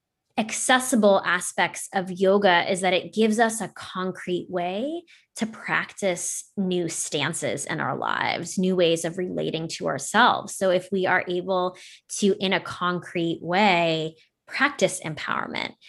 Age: 20-39